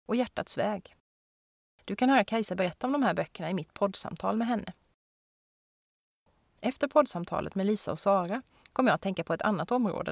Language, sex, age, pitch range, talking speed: Swedish, female, 30-49, 180-225 Hz, 185 wpm